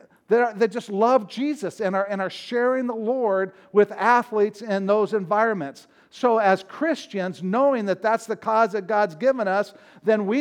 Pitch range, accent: 215-255 Hz, American